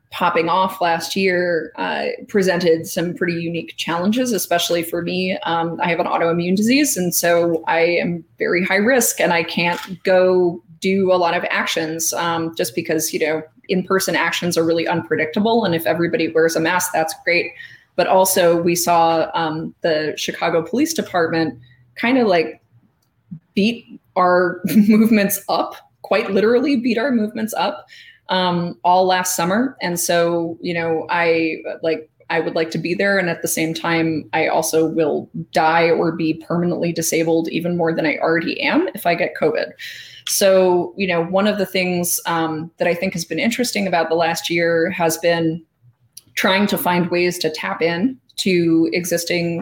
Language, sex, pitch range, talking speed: English, female, 165-190 Hz, 175 wpm